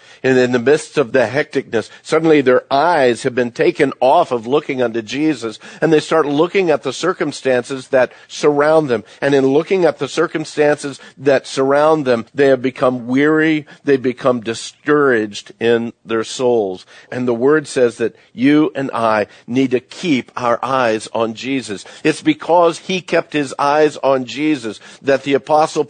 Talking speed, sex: 170 wpm, male